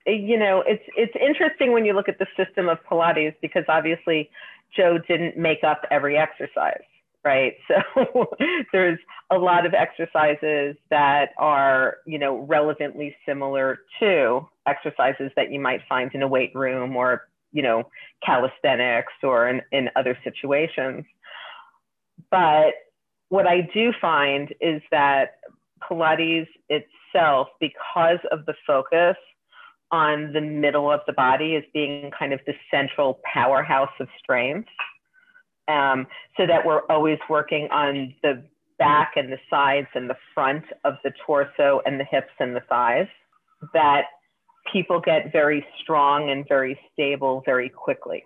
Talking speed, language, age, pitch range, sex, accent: 145 wpm, English, 40-59, 140-175 Hz, female, American